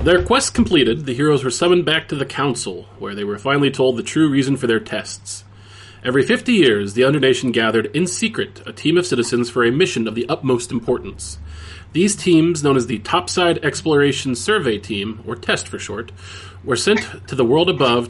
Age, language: 30-49, English